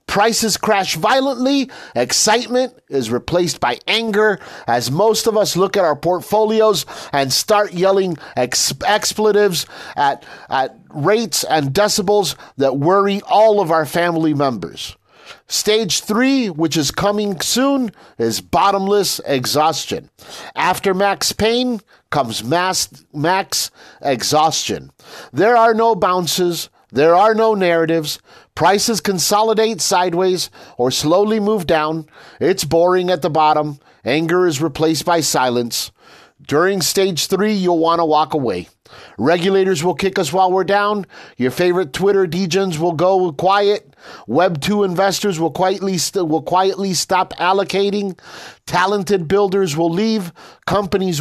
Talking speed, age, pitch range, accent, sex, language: 125 wpm, 50-69, 165-205 Hz, American, male, English